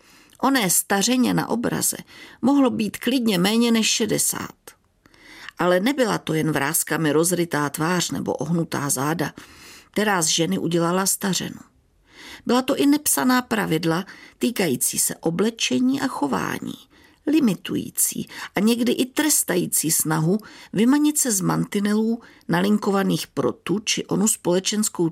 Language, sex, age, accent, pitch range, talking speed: Czech, female, 50-69, native, 170-260 Hz, 120 wpm